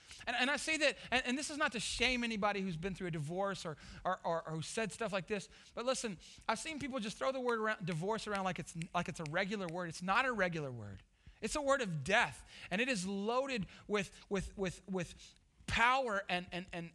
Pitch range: 175-235 Hz